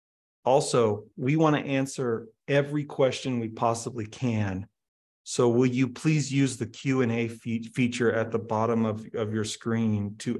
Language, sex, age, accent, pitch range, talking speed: English, male, 40-59, American, 110-130 Hz, 145 wpm